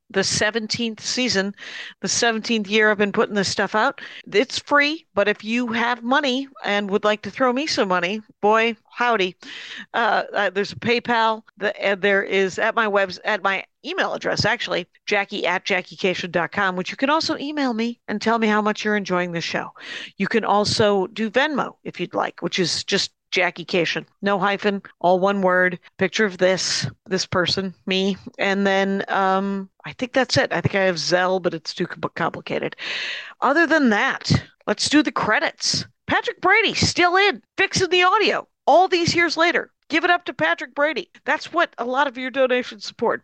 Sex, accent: female, American